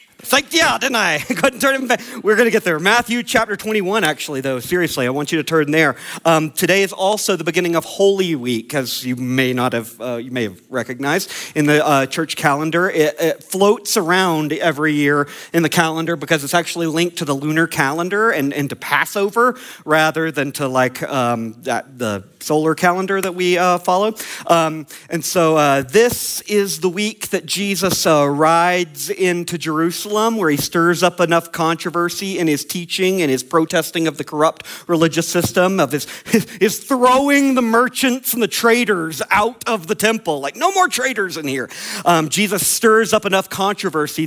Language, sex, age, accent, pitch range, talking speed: English, male, 40-59, American, 145-200 Hz, 190 wpm